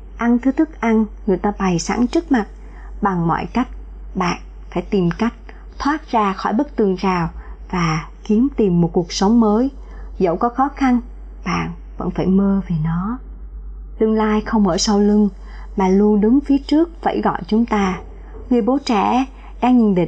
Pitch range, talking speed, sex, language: 185-230 Hz, 180 wpm, male, Vietnamese